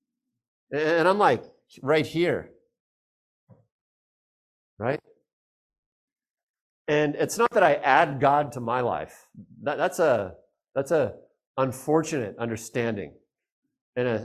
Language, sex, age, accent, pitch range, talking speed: English, male, 50-69, American, 110-160 Hz, 95 wpm